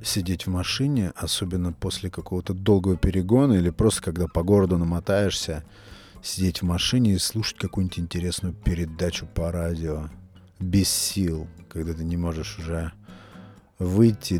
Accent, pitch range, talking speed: native, 85-100 Hz, 135 wpm